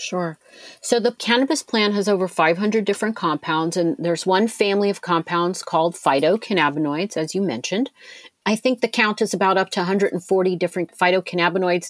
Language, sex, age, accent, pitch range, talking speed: English, female, 40-59, American, 160-200 Hz, 160 wpm